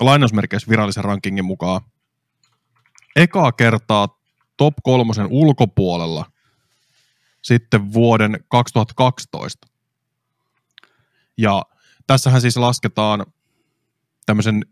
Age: 20-39